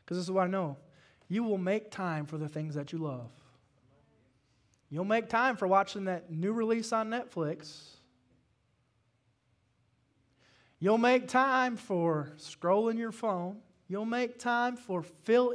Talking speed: 145 wpm